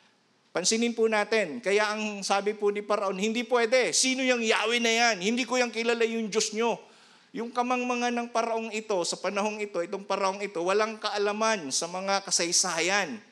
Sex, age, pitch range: male, 50-69, 190-230 Hz